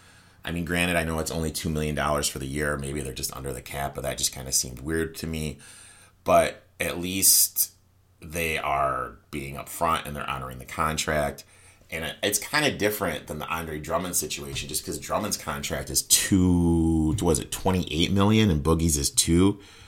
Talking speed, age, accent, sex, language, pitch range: 195 wpm, 30-49, American, male, English, 70-90 Hz